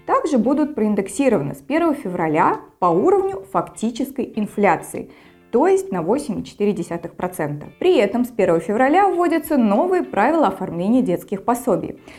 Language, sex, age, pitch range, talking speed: Russian, female, 20-39, 180-270 Hz, 125 wpm